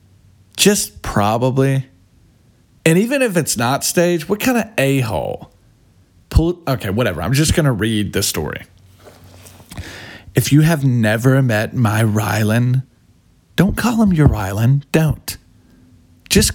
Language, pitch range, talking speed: English, 95-145 Hz, 125 wpm